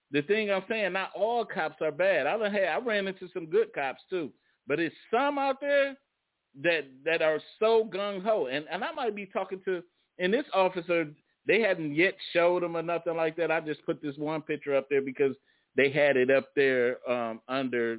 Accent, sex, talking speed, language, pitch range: American, male, 215 wpm, English, 145-190 Hz